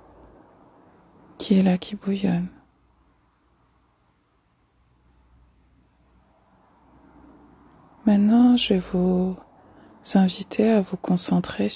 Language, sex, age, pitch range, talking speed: French, female, 20-39, 170-200 Hz, 65 wpm